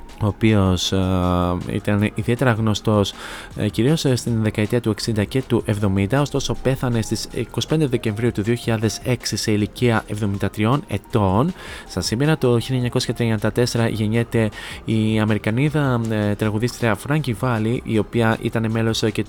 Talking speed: 130 wpm